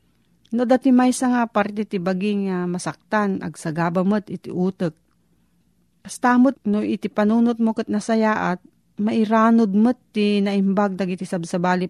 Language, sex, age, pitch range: Filipino, female, 40-59, 175-225 Hz